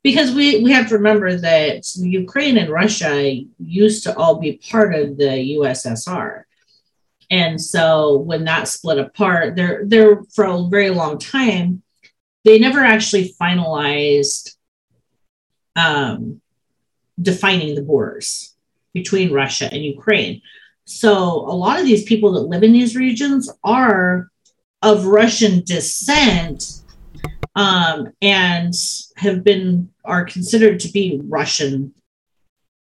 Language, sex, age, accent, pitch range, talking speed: English, female, 40-59, American, 160-215 Hz, 120 wpm